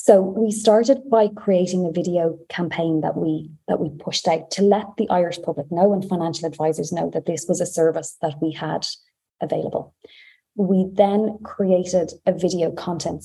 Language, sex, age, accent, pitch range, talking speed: English, female, 20-39, Irish, 165-190 Hz, 175 wpm